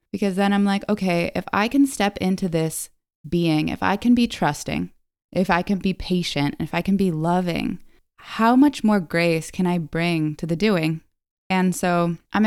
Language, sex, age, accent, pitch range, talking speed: English, female, 20-39, American, 165-200 Hz, 195 wpm